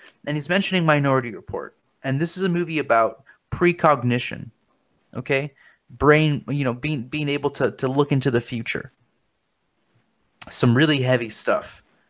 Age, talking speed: 20-39, 145 wpm